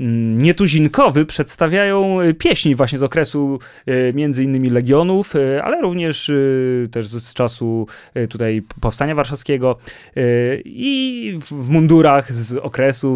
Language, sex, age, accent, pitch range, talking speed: Polish, male, 20-39, native, 120-150 Hz, 100 wpm